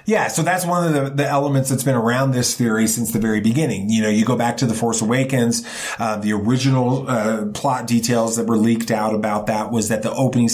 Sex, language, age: male, English, 30-49